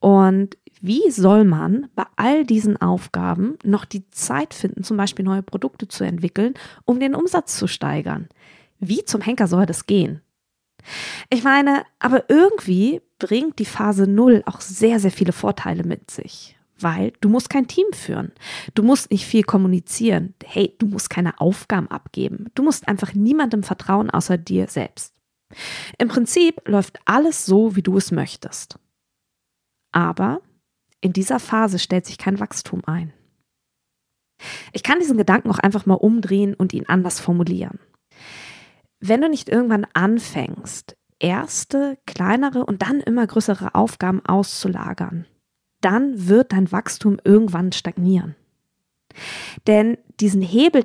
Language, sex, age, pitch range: German, female, 20-39, 185-225 Hz